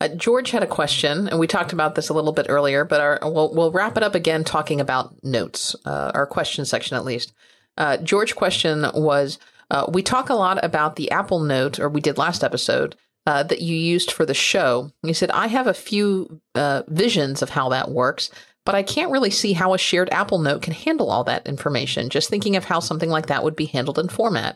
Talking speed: 235 wpm